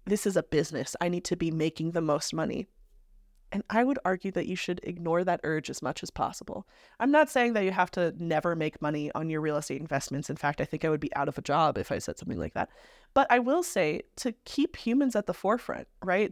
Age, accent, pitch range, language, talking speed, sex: 20-39, American, 170-225 Hz, English, 255 wpm, female